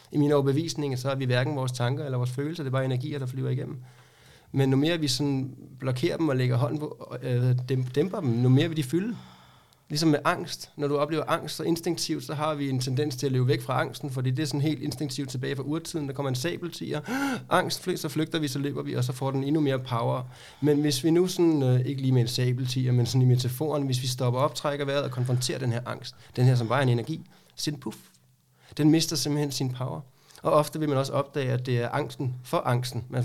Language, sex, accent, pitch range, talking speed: Danish, male, native, 130-155 Hz, 240 wpm